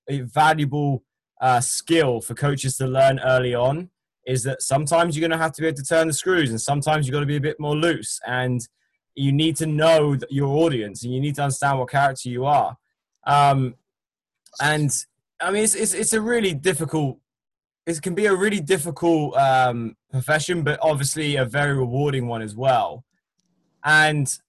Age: 10-29